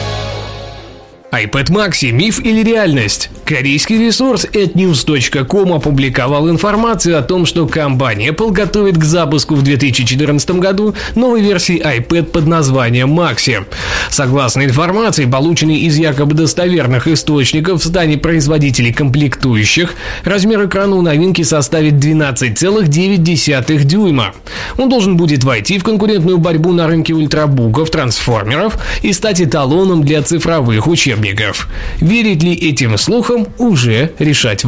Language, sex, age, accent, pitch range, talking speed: Russian, male, 20-39, native, 130-180 Hz, 120 wpm